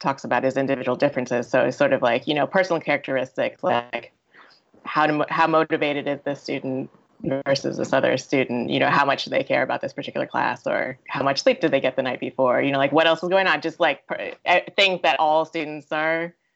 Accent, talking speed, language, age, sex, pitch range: American, 230 wpm, English, 20-39, female, 135-165 Hz